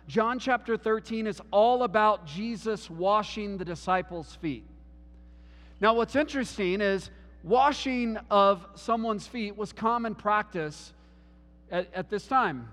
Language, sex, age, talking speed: English, male, 40-59, 125 wpm